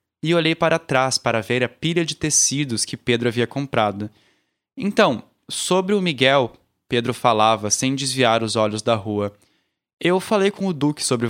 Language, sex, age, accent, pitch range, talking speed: Portuguese, male, 10-29, Brazilian, 120-165 Hz, 170 wpm